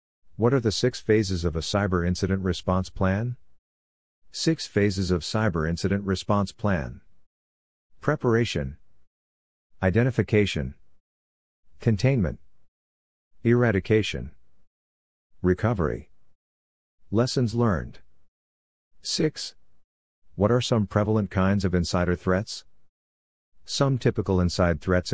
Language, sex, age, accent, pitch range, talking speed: English, male, 50-69, American, 70-105 Hz, 90 wpm